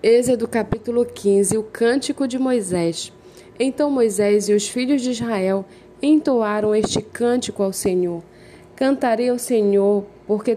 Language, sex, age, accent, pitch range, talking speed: Portuguese, female, 20-39, Brazilian, 200-235 Hz, 130 wpm